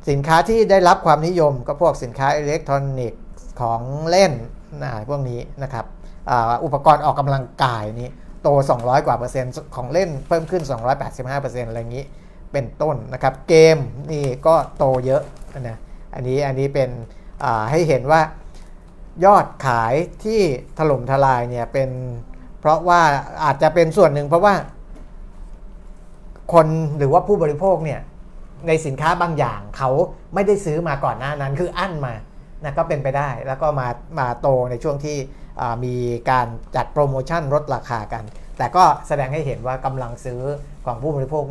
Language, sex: Thai, male